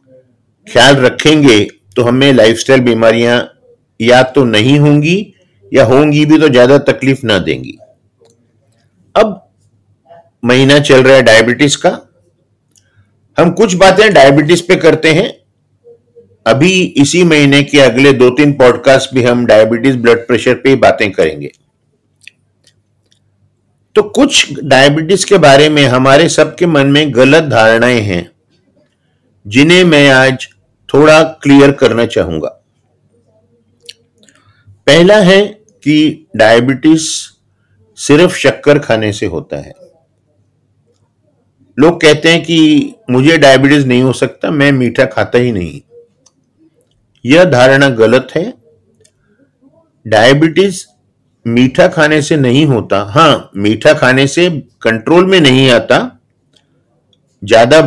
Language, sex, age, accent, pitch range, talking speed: Hindi, male, 50-69, native, 115-155 Hz, 115 wpm